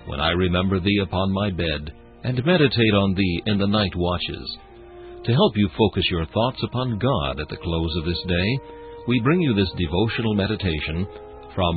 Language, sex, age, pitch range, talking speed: English, male, 60-79, 90-120 Hz, 185 wpm